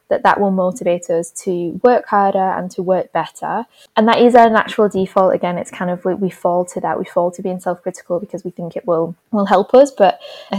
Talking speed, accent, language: 240 wpm, British, English